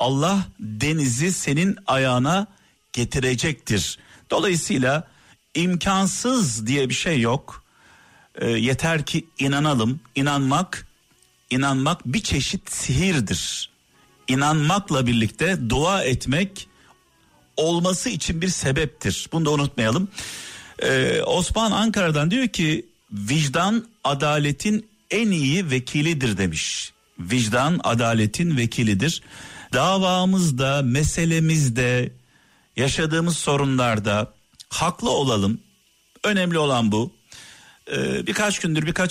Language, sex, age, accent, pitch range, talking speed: Turkish, male, 50-69, native, 125-170 Hz, 90 wpm